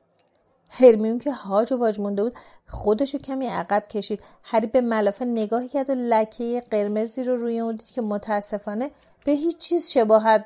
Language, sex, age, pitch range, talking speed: Persian, female, 40-59, 200-240 Hz, 170 wpm